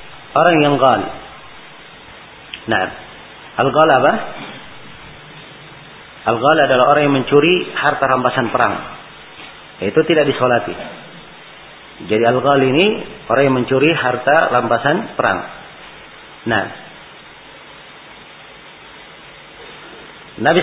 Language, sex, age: Malay, male, 40-59